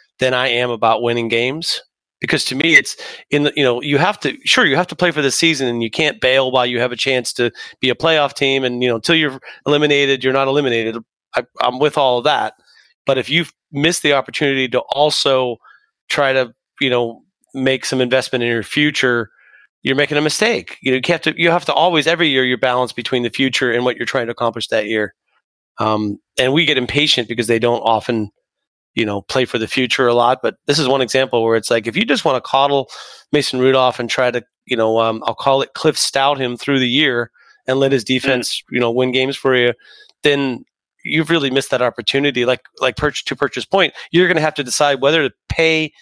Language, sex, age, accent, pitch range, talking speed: English, male, 30-49, American, 120-150 Hz, 230 wpm